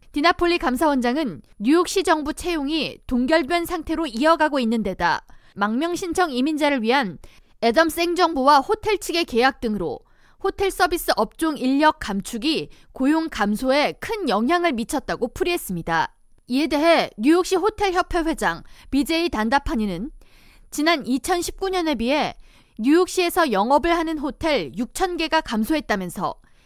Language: Korean